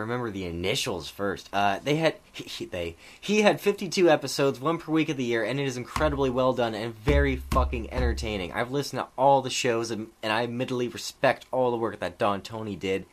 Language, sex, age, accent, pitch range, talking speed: English, male, 20-39, American, 115-145 Hz, 210 wpm